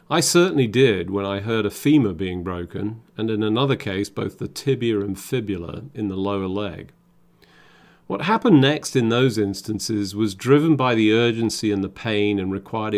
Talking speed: 180 wpm